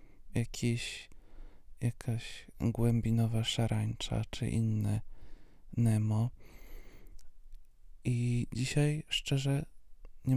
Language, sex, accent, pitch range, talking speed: Polish, male, native, 105-125 Hz, 60 wpm